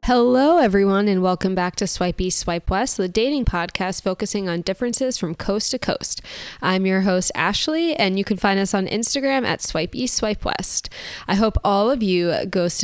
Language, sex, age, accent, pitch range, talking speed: English, female, 20-39, American, 175-210 Hz, 195 wpm